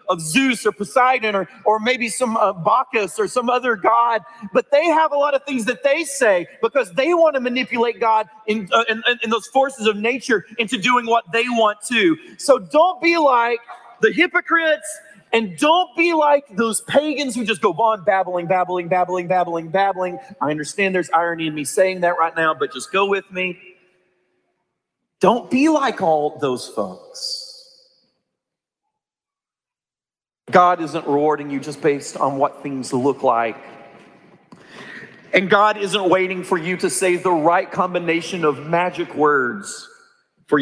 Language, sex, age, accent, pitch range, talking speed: English, male, 40-59, American, 165-250 Hz, 165 wpm